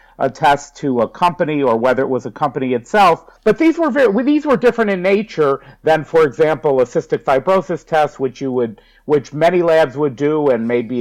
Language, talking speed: English, 205 wpm